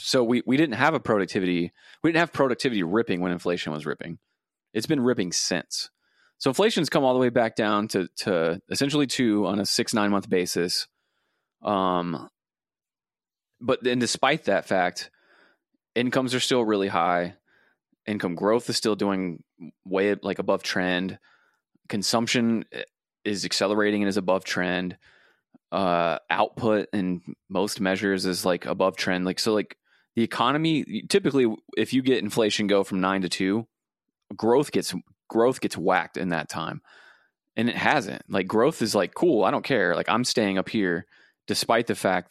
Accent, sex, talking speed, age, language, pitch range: American, male, 165 wpm, 20-39, English, 90-115 Hz